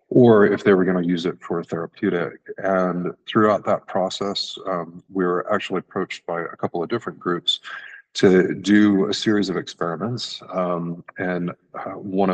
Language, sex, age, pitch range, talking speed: English, male, 40-59, 85-95 Hz, 170 wpm